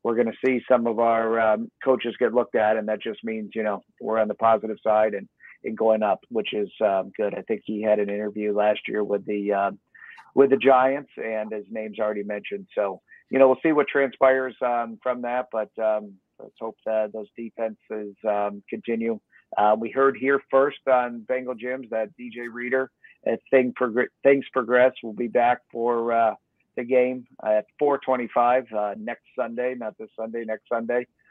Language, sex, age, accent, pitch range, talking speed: English, male, 50-69, American, 110-125 Hz, 195 wpm